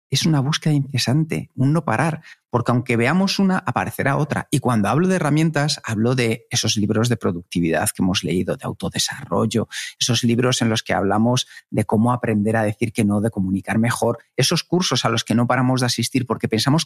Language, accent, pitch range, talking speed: Spanish, Spanish, 120-160 Hz, 200 wpm